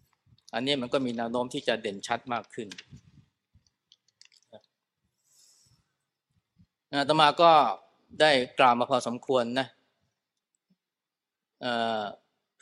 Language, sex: Thai, male